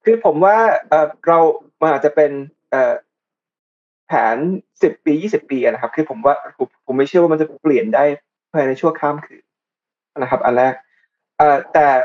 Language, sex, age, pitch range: Thai, male, 20-39, 140-170 Hz